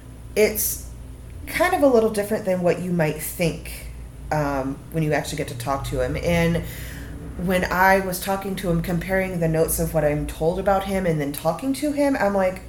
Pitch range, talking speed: 160-195 Hz, 205 wpm